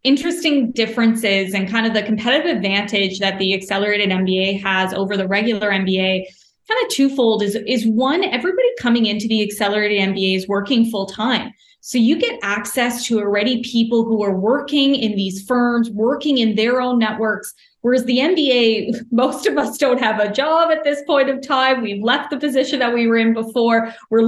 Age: 20-39